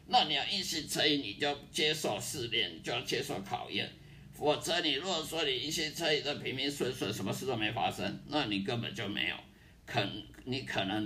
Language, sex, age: Chinese, male, 50-69